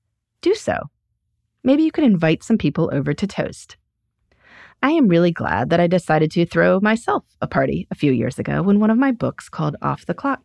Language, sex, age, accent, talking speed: English, female, 30-49, American, 205 wpm